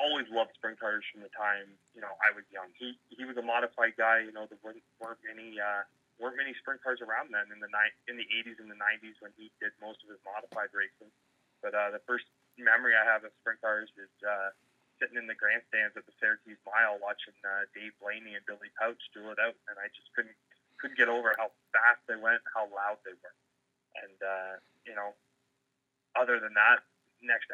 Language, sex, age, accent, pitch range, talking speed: English, male, 20-39, American, 105-115 Hz, 220 wpm